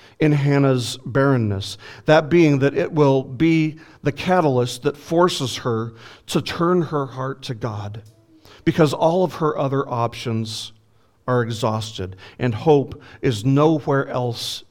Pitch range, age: 115-150 Hz, 50-69